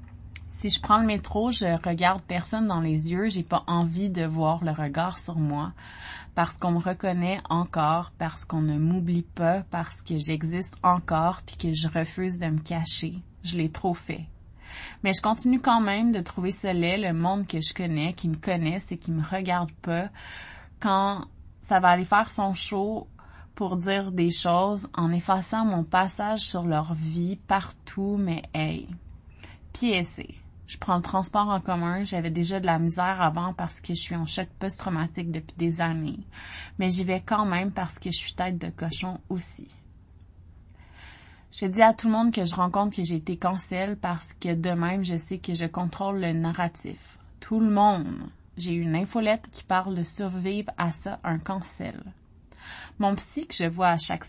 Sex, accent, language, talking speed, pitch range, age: female, Canadian, French, 185 wpm, 165-195 Hz, 20-39